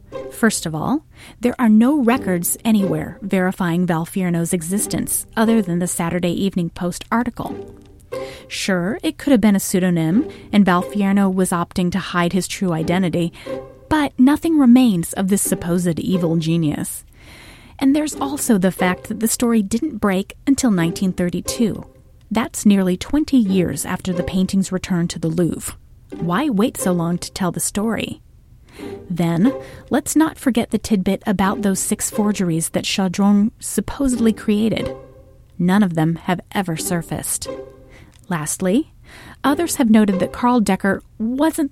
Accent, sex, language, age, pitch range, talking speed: American, female, English, 30-49, 175-225 Hz, 145 wpm